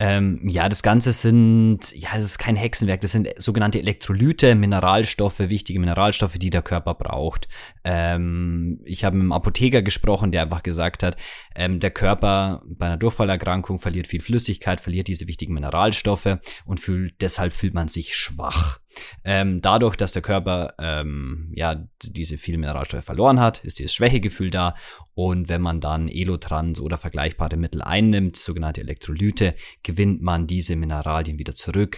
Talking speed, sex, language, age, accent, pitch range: 150 wpm, male, German, 30-49, German, 80-100 Hz